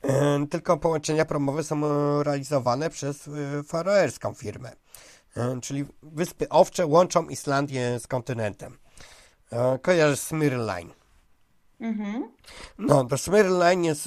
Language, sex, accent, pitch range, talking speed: Polish, male, native, 130-170 Hz, 95 wpm